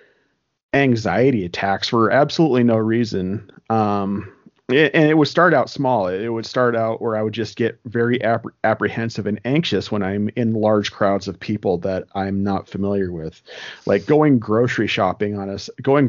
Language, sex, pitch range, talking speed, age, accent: English, male, 100-130 Hz, 175 wpm, 40-59, American